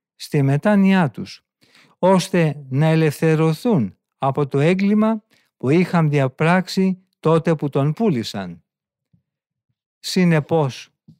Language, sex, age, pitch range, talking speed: Greek, male, 50-69, 135-190 Hz, 90 wpm